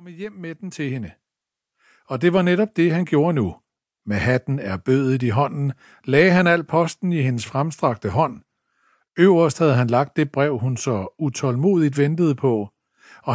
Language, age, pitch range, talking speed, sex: Danish, 60-79, 130-175 Hz, 180 wpm, male